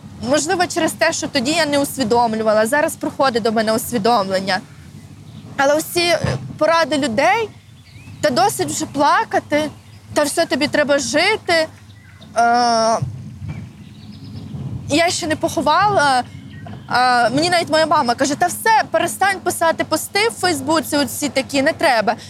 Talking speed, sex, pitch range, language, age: 125 wpm, female, 235-325 Hz, Ukrainian, 20-39